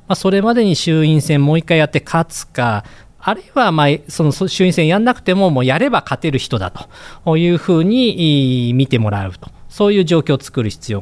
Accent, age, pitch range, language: native, 40-59, 115-170 Hz, Japanese